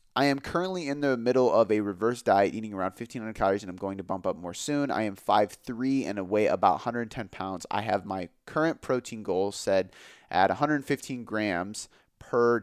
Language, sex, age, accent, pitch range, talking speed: English, male, 30-49, American, 100-130 Hz, 195 wpm